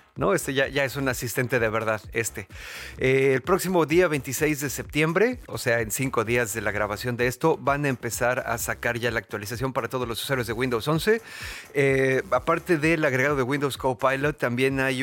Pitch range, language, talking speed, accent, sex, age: 115-135 Hz, Spanish, 205 wpm, Mexican, male, 40-59